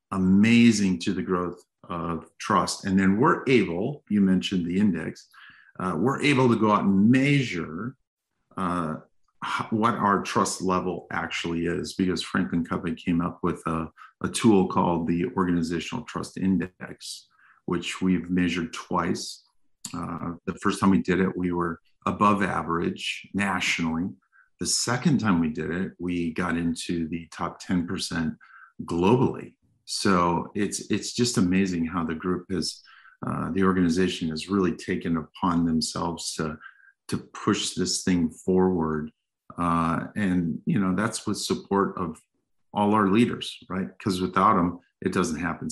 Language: English